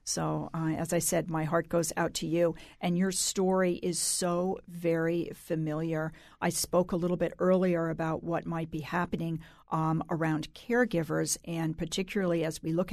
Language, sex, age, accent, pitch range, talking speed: English, female, 50-69, American, 170-195 Hz, 170 wpm